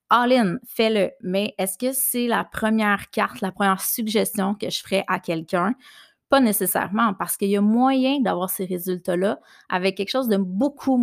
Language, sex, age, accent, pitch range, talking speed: French, female, 30-49, Canadian, 185-220 Hz, 180 wpm